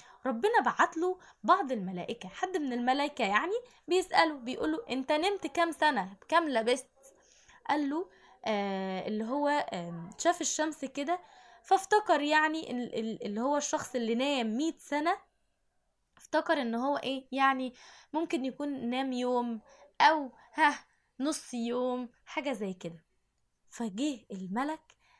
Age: 10-29